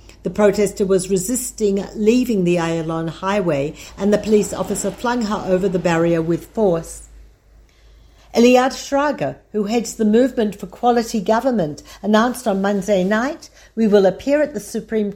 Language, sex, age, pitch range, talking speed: Hebrew, female, 50-69, 185-235 Hz, 150 wpm